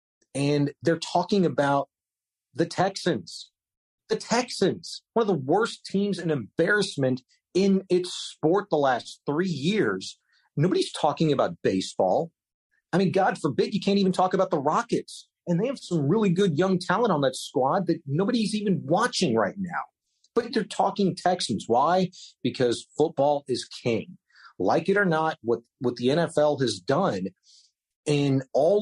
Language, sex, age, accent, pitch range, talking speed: English, male, 40-59, American, 130-185 Hz, 155 wpm